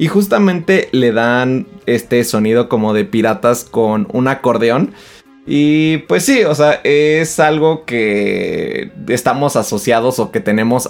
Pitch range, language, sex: 110-150 Hz, Spanish, male